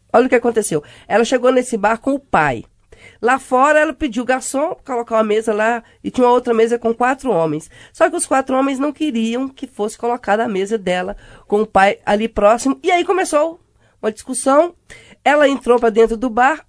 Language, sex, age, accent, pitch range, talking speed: Portuguese, female, 20-39, Brazilian, 215-290 Hz, 210 wpm